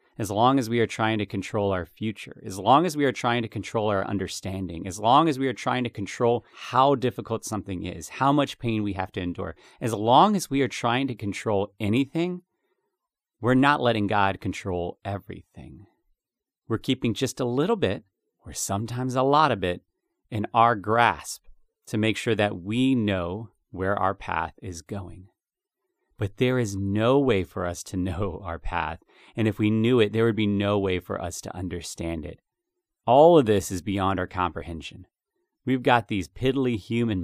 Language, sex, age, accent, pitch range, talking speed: English, male, 30-49, American, 95-125 Hz, 190 wpm